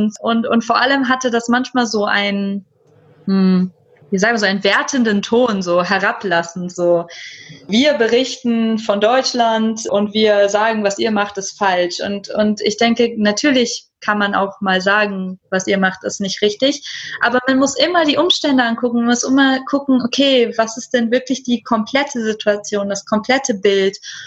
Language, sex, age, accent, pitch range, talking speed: German, female, 20-39, German, 200-245 Hz, 170 wpm